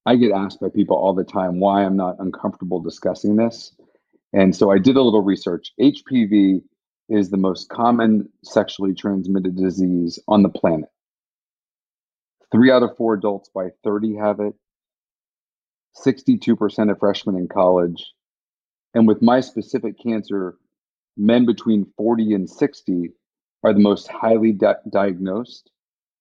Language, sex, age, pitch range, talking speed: English, male, 40-59, 95-110 Hz, 140 wpm